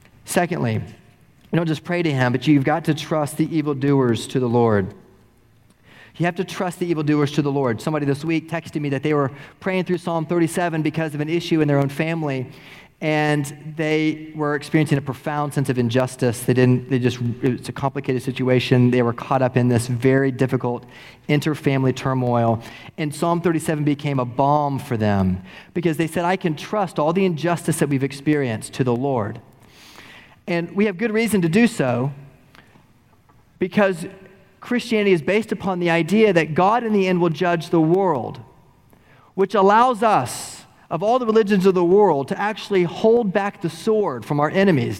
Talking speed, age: 185 wpm, 30-49